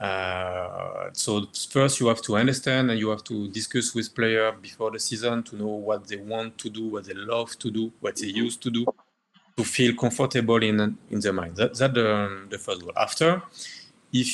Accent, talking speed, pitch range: French, 205 wpm, 105-125 Hz